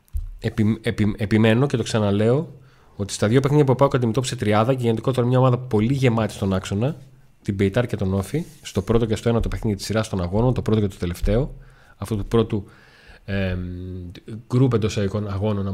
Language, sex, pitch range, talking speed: Greek, male, 100-130 Hz, 200 wpm